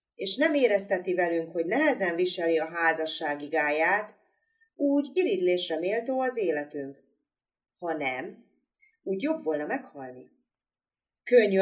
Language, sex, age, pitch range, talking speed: Hungarian, female, 30-49, 160-230 Hz, 110 wpm